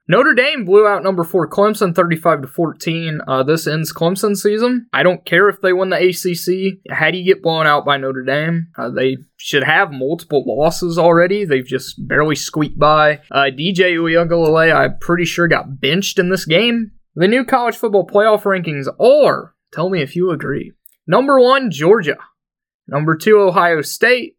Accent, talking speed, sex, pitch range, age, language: American, 180 wpm, male, 140-190 Hz, 20-39, English